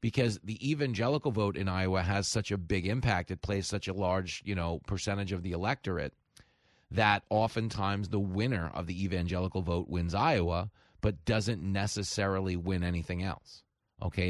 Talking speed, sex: 165 wpm, male